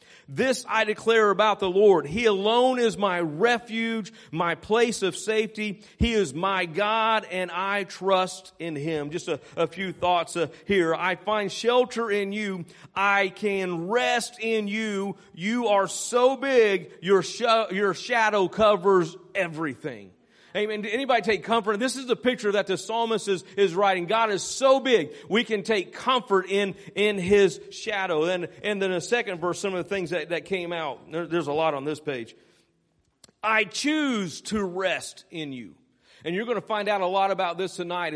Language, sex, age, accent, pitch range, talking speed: English, male, 40-59, American, 180-220 Hz, 180 wpm